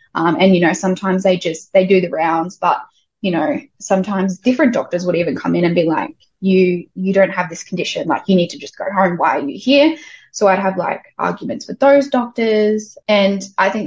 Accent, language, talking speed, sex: Australian, English, 225 wpm, female